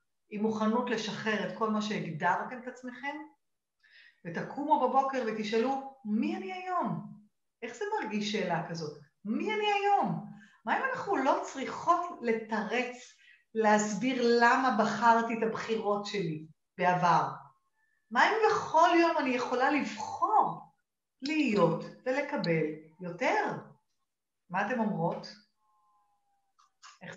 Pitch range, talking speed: 200-255 Hz, 110 wpm